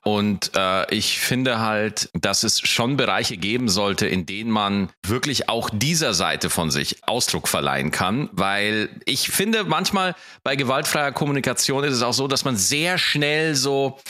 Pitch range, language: 95-130 Hz, German